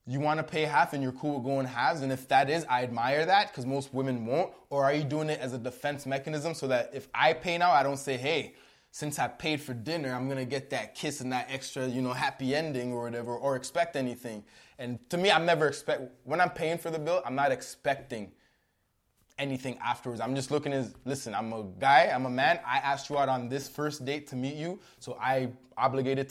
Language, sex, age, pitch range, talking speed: English, male, 20-39, 130-155 Hz, 240 wpm